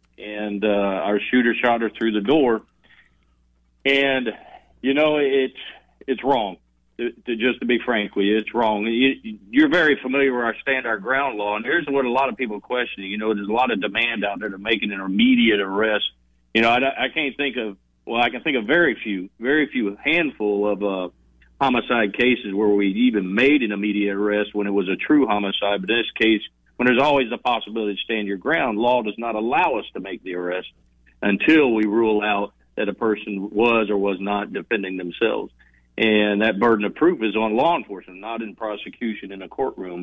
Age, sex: 50-69, male